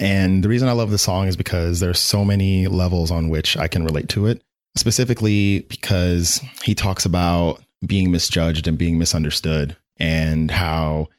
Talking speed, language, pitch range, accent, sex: 175 wpm, English, 80-100 Hz, American, male